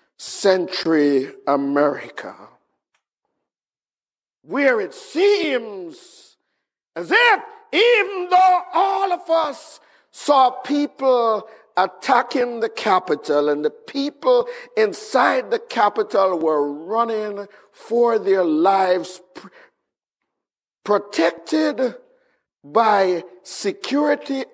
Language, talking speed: English, 75 wpm